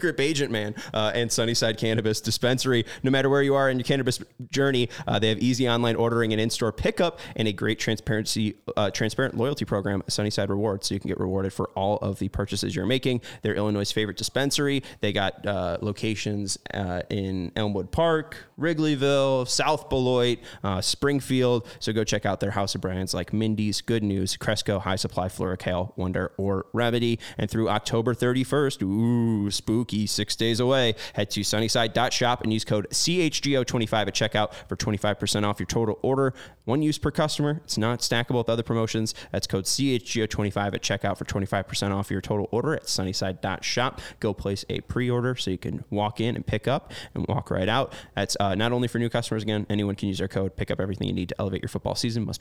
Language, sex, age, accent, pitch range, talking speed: English, male, 20-39, American, 100-125 Hz, 200 wpm